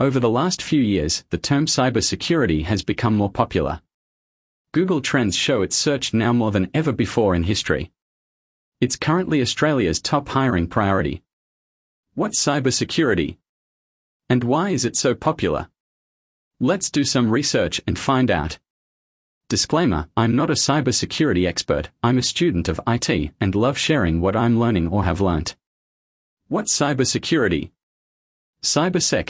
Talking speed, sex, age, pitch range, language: 140 wpm, male, 40-59, 90-130 Hz, English